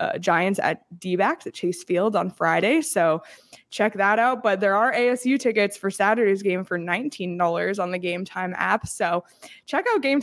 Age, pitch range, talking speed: 20-39, 185-240 Hz, 195 wpm